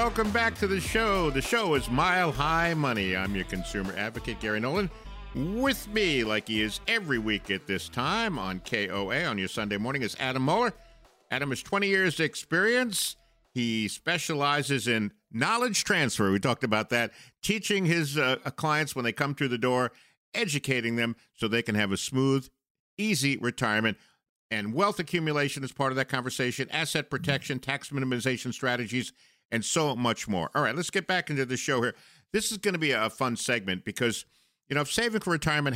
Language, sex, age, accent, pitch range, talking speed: English, male, 50-69, American, 115-165 Hz, 185 wpm